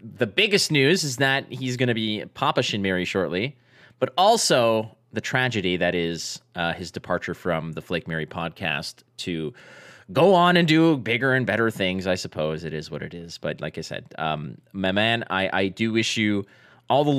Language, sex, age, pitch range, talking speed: English, male, 30-49, 95-125 Hz, 200 wpm